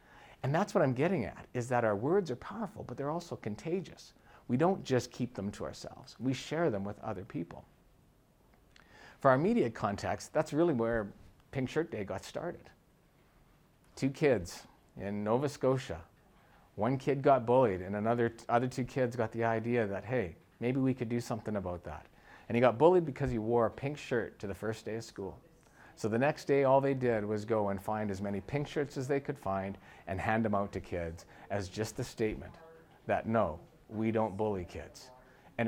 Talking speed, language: 200 wpm, English